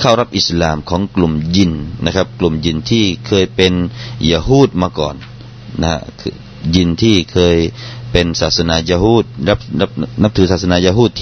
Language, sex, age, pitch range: Thai, male, 30-49, 95-120 Hz